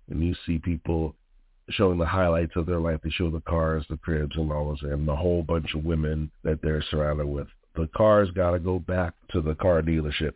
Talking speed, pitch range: 230 wpm, 75-90 Hz